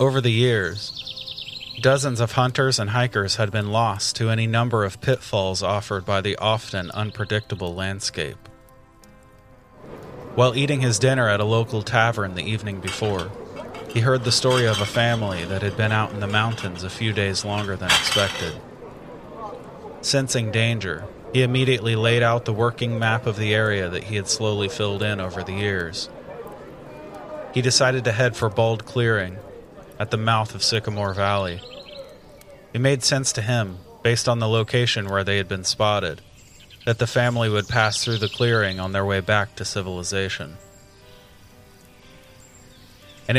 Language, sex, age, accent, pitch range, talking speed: English, male, 30-49, American, 100-120 Hz, 160 wpm